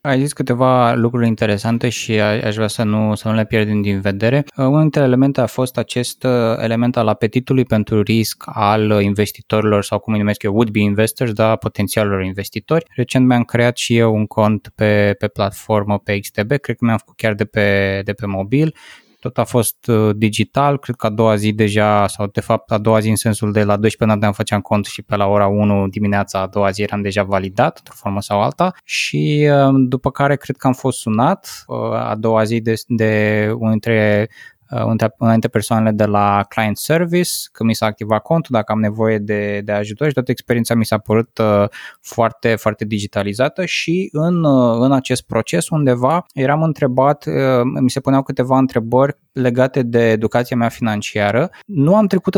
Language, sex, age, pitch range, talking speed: Romanian, male, 20-39, 105-130 Hz, 185 wpm